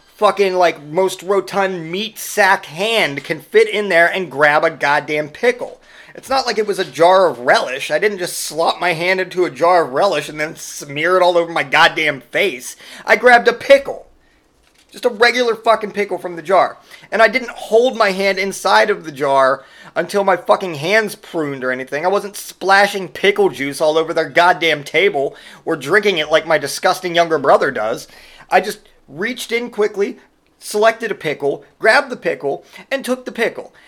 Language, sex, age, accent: English, male, 30-49, American